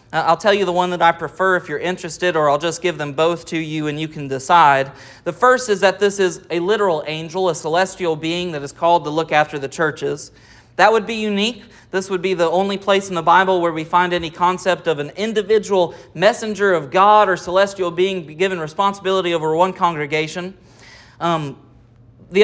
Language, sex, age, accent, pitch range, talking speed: English, male, 30-49, American, 155-205 Hz, 205 wpm